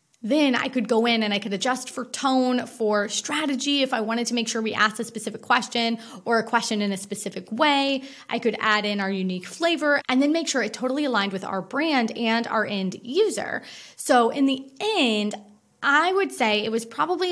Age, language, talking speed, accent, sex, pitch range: 20-39, English, 215 wpm, American, female, 205-250 Hz